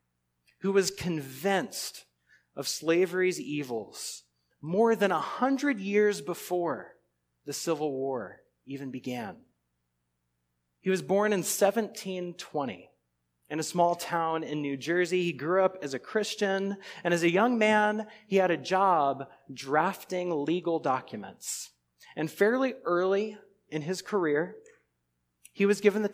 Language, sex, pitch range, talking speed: English, male, 130-195 Hz, 130 wpm